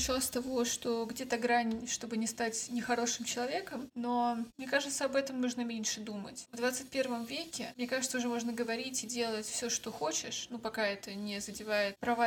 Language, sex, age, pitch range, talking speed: Russian, female, 20-39, 220-240 Hz, 180 wpm